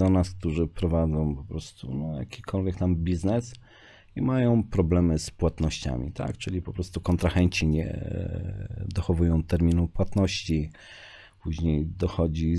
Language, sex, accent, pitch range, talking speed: Polish, male, native, 80-95 Hz, 125 wpm